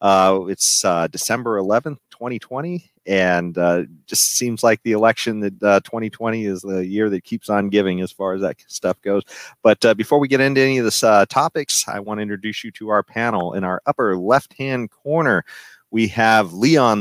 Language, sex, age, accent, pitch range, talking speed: English, male, 30-49, American, 100-115 Hz, 200 wpm